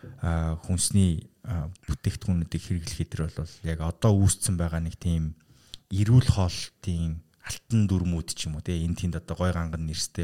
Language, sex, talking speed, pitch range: English, male, 140 wpm, 90-120 Hz